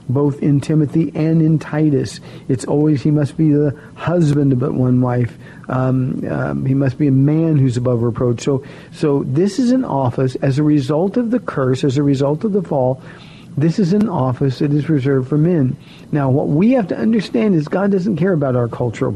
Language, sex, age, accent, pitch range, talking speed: English, male, 50-69, American, 135-165 Hz, 205 wpm